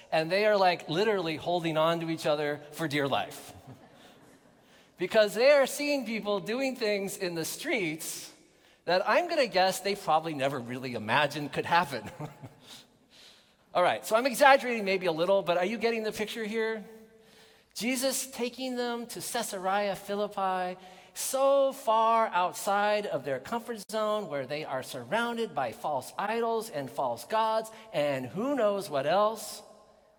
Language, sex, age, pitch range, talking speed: English, male, 40-59, 175-225 Hz, 155 wpm